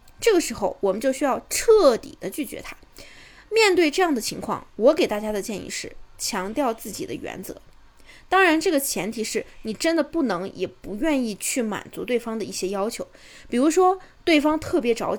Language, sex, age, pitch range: Chinese, female, 20-39, 215-310 Hz